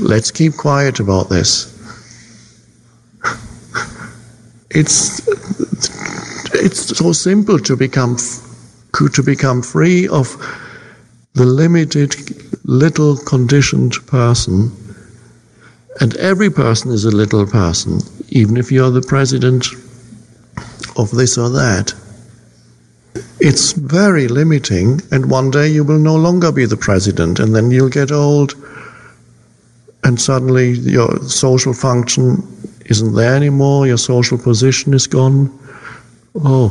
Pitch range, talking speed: 110-140 Hz, 115 wpm